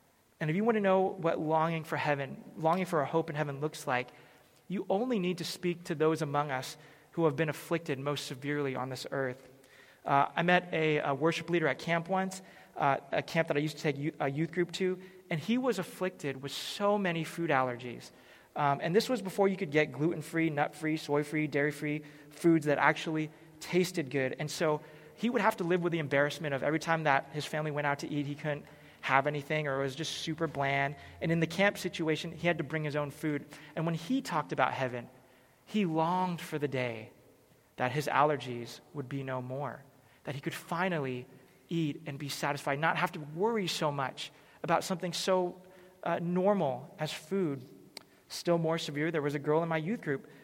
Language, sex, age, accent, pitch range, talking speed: English, male, 30-49, American, 145-170 Hz, 210 wpm